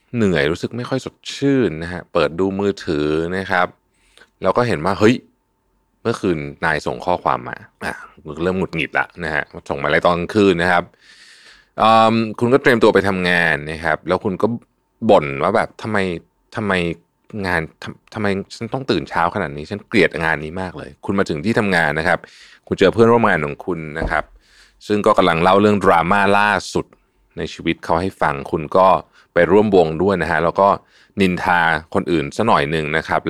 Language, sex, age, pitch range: Thai, male, 20-39, 85-115 Hz